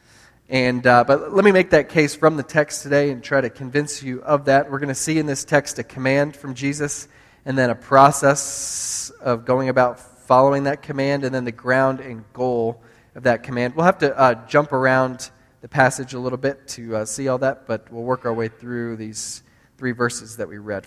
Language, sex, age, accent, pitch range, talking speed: English, male, 20-39, American, 125-140 Hz, 220 wpm